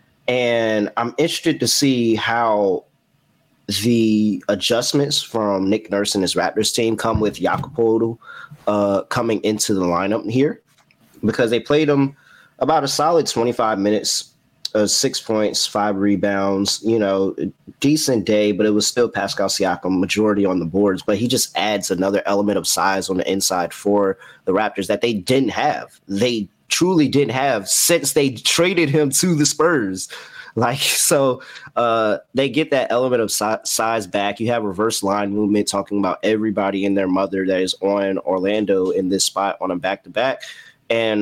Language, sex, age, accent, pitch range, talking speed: English, male, 30-49, American, 100-120 Hz, 165 wpm